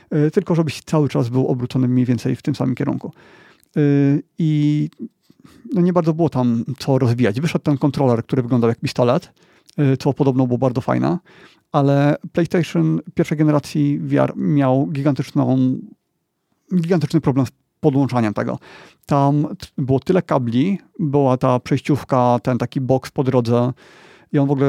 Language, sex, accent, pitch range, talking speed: Polish, male, native, 130-155 Hz, 150 wpm